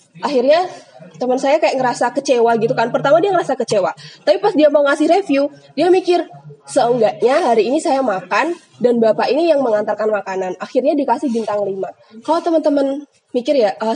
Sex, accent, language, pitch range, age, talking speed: female, native, Indonesian, 215-290 Hz, 20-39, 170 wpm